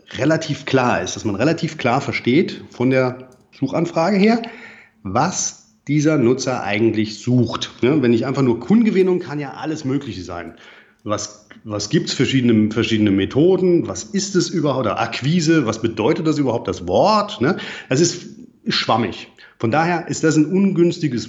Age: 40-59